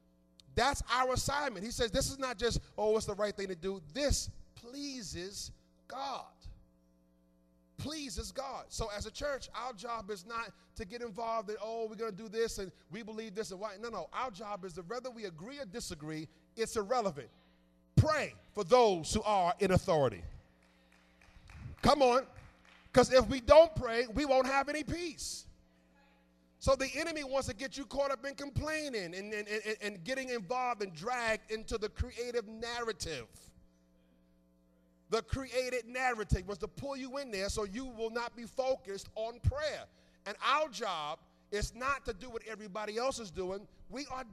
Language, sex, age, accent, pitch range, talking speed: English, male, 30-49, American, 190-270 Hz, 175 wpm